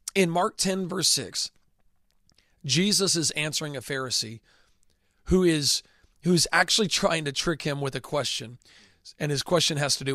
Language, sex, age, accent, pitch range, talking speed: English, male, 40-59, American, 130-165 Hz, 160 wpm